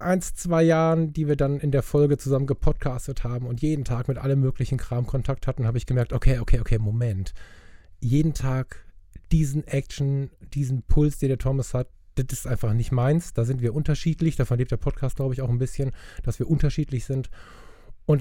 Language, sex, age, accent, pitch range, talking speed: German, male, 20-39, German, 125-145 Hz, 200 wpm